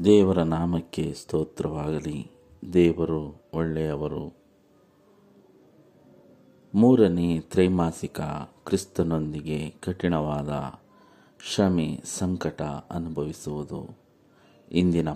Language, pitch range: Kannada, 75-95 Hz